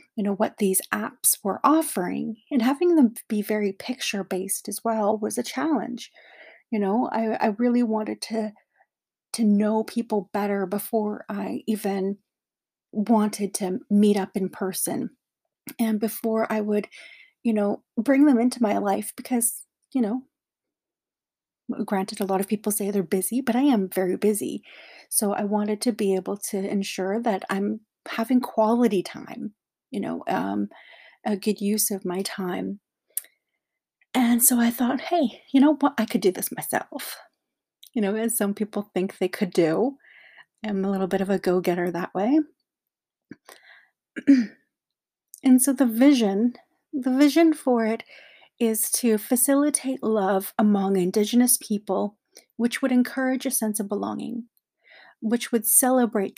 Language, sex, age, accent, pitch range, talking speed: English, female, 30-49, American, 200-250 Hz, 150 wpm